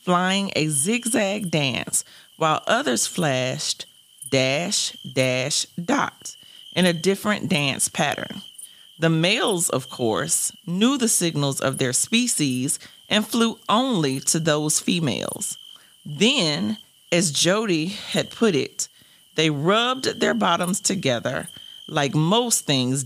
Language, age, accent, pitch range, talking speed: English, 40-59, American, 145-205 Hz, 115 wpm